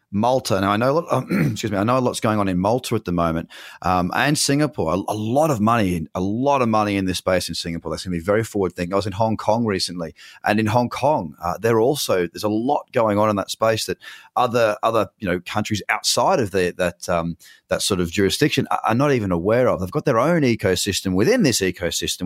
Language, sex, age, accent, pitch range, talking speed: English, male, 30-49, Australian, 90-115 Hz, 255 wpm